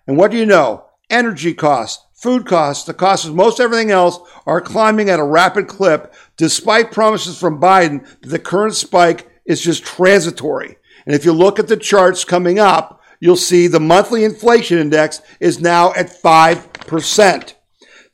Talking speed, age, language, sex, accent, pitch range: 170 wpm, 50-69, English, male, American, 170-220 Hz